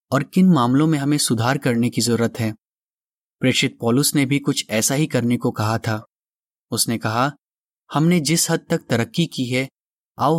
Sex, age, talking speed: male, 30-49, 180 wpm